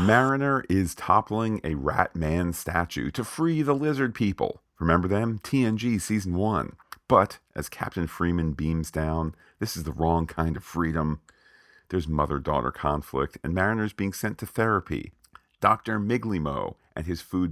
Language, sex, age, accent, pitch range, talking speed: English, male, 40-59, American, 80-110 Hz, 150 wpm